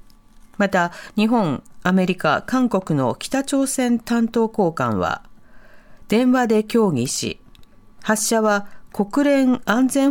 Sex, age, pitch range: female, 40-59, 180-255 Hz